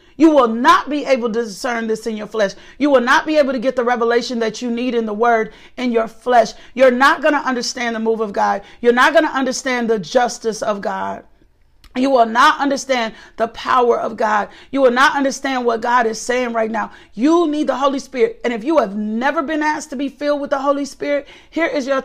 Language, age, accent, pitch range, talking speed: English, 40-59, American, 235-295 Hz, 235 wpm